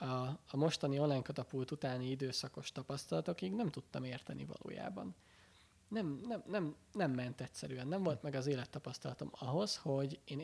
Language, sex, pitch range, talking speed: Hungarian, male, 125-150 Hz, 145 wpm